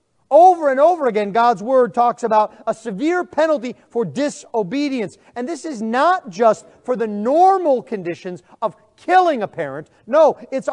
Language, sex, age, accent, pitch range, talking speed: English, male, 40-59, American, 200-280 Hz, 155 wpm